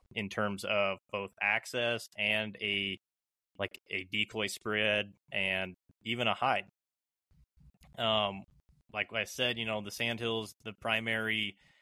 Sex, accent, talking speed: male, American, 130 wpm